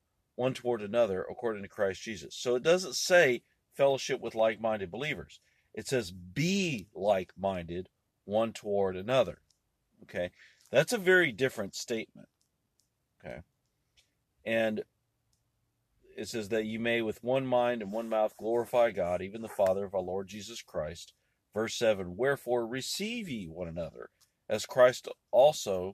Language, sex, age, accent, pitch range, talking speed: English, male, 40-59, American, 100-125 Hz, 145 wpm